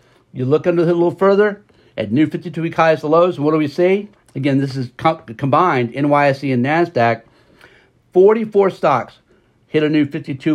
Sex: male